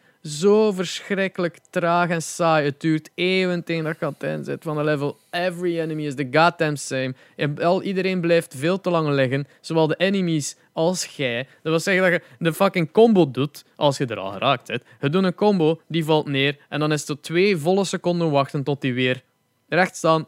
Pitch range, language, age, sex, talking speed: 140-185 Hz, Dutch, 20-39, male, 195 wpm